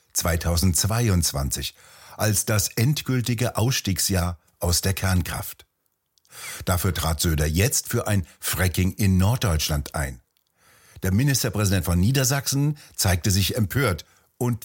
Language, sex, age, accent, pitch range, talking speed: German, male, 60-79, German, 85-110 Hz, 105 wpm